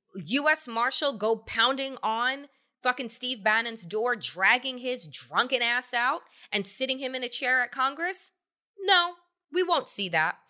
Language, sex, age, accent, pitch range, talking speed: English, female, 20-39, American, 200-265 Hz, 155 wpm